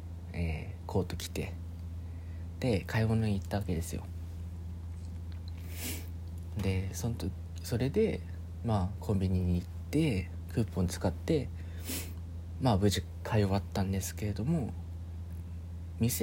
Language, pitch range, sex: Japanese, 85-100 Hz, male